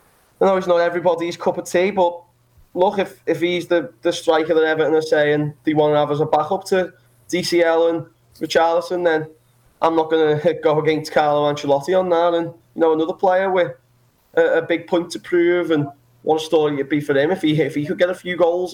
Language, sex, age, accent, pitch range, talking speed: English, male, 20-39, British, 140-165 Hz, 230 wpm